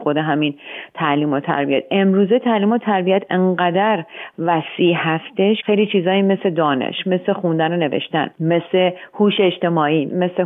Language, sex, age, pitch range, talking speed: Persian, female, 40-59, 150-195 Hz, 140 wpm